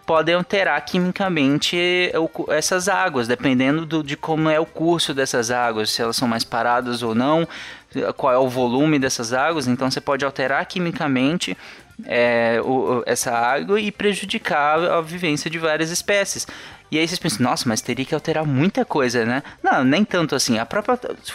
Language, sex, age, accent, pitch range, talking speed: Portuguese, male, 20-39, Brazilian, 135-185 Hz, 160 wpm